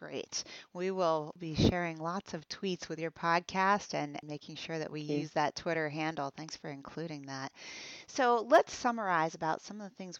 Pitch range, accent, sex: 150-185 Hz, American, female